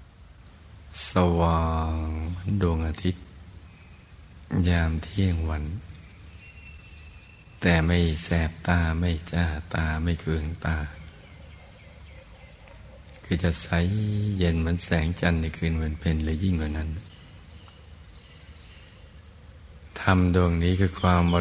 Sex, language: male, Thai